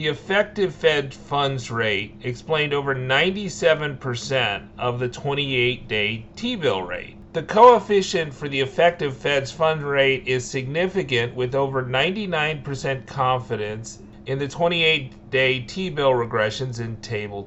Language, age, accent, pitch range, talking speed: English, 40-59, American, 125-165 Hz, 125 wpm